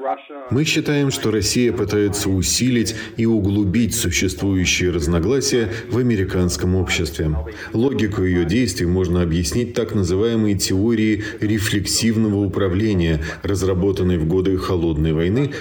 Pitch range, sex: 90-115 Hz, male